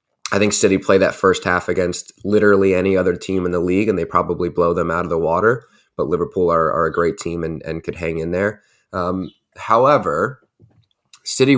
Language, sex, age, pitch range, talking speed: English, male, 20-39, 85-95 Hz, 205 wpm